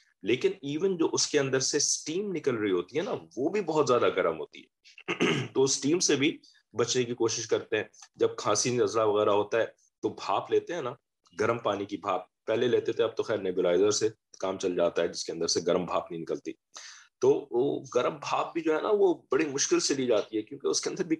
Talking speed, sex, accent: 200 wpm, male, Indian